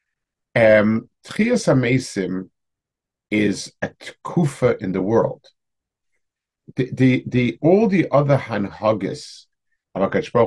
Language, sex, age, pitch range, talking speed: English, male, 50-69, 100-135 Hz, 105 wpm